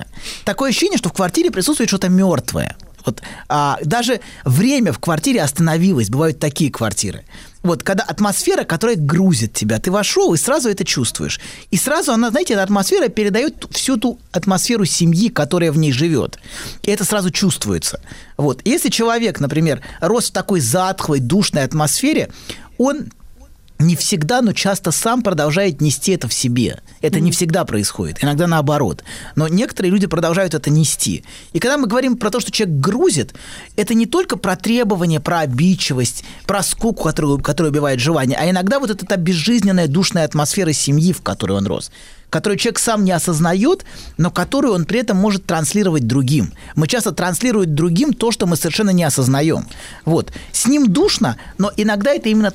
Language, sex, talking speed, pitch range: Russian, male, 170 wpm, 155-210 Hz